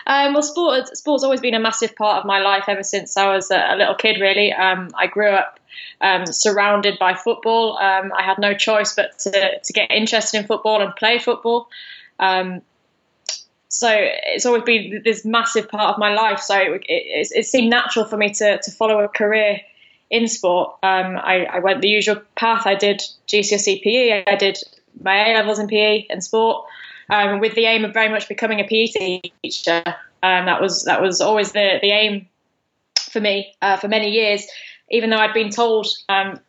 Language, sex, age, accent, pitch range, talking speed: English, female, 10-29, British, 195-225 Hz, 195 wpm